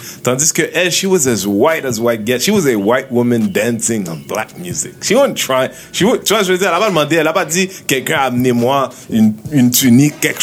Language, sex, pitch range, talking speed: French, male, 125-170 Hz, 235 wpm